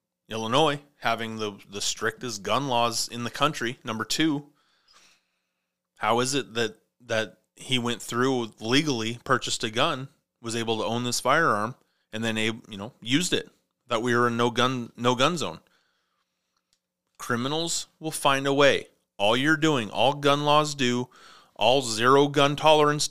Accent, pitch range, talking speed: American, 110-145 Hz, 160 wpm